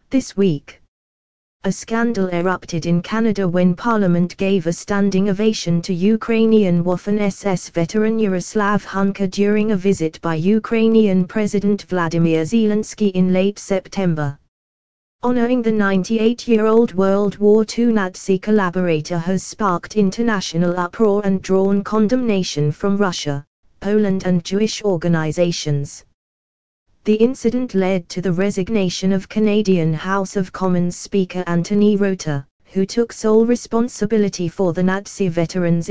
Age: 20-39